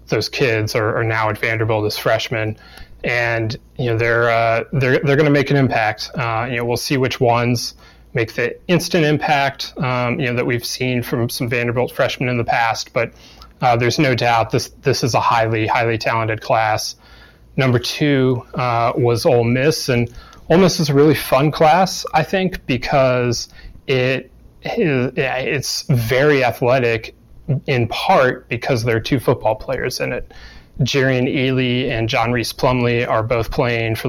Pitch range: 115-140 Hz